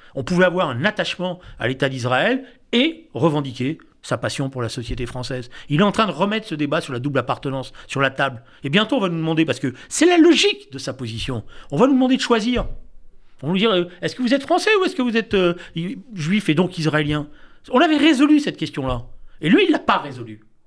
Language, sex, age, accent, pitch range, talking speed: French, male, 40-59, French, 130-210 Hz, 240 wpm